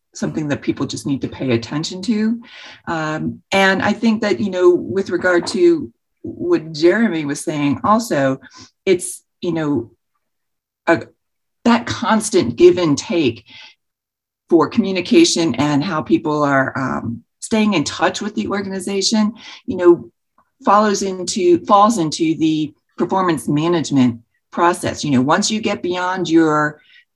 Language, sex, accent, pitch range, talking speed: English, female, American, 155-215 Hz, 140 wpm